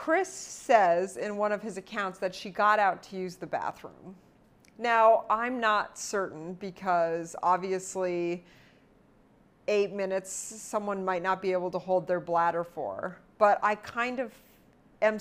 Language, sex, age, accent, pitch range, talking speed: English, female, 40-59, American, 180-215 Hz, 150 wpm